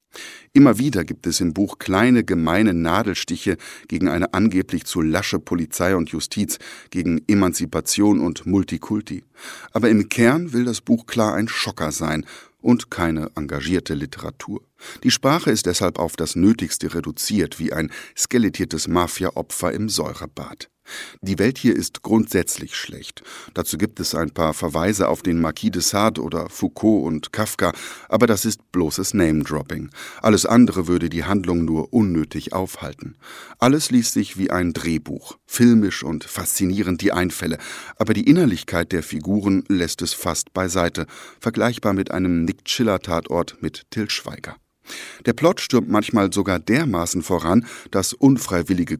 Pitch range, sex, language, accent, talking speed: 85-110 Hz, male, German, German, 145 wpm